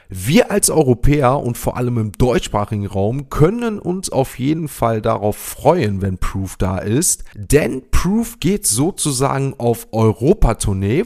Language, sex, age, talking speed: German, male, 30-49, 140 wpm